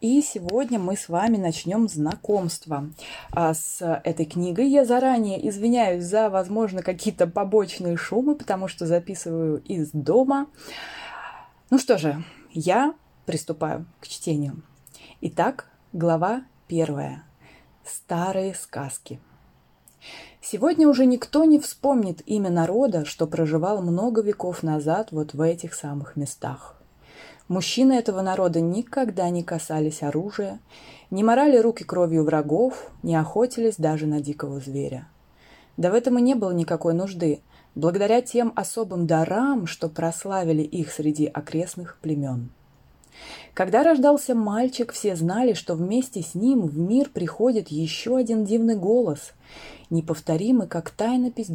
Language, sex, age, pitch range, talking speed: Russian, female, 20-39, 160-225 Hz, 125 wpm